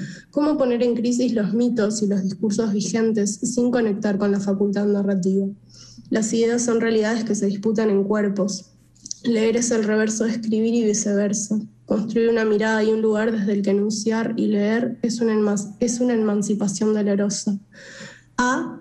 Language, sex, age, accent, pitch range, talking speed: Spanish, female, 10-29, Argentinian, 205-230 Hz, 160 wpm